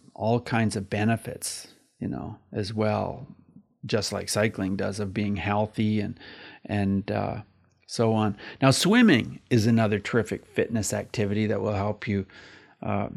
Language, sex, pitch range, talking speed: English, male, 105-125 Hz, 145 wpm